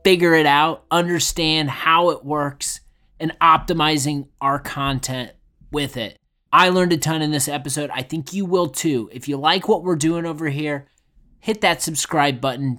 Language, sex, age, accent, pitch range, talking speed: English, male, 30-49, American, 125-155 Hz, 175 wpm